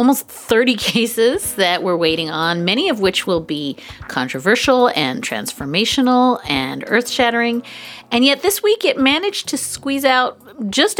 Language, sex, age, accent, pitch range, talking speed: English, female, 40-59, American, 185-250 Hz, 145 wpm